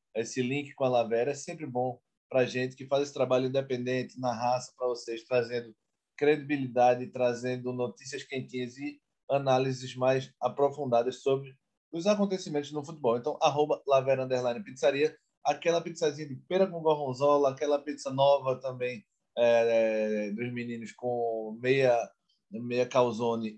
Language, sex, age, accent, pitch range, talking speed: Portuguese, male, 20-39, Brazilian, 120-145 Hz, 135 wpm